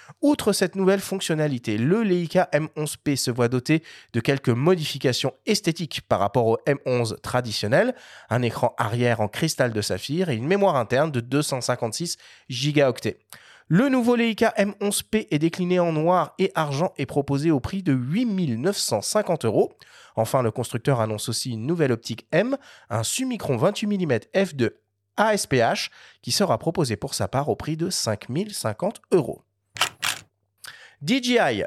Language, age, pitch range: French, 30-49, 120-185 Hz